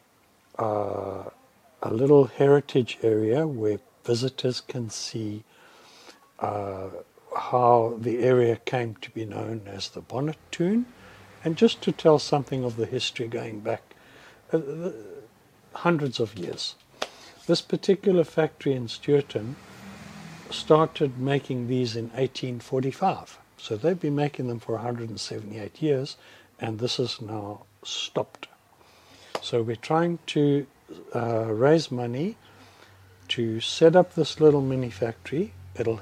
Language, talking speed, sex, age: English, 120 wpm, male, 60-79